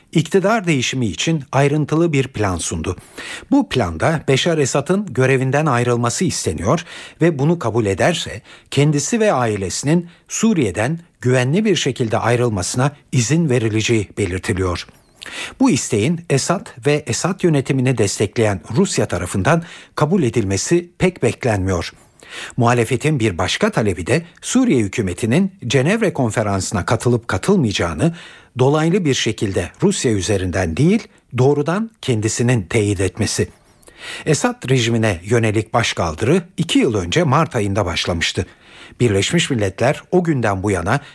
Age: 60-79